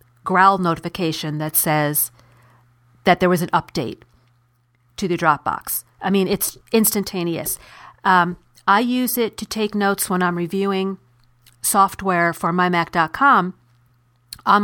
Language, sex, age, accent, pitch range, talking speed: English, female, 40-59, American, 160-200 Hz, 125 wpm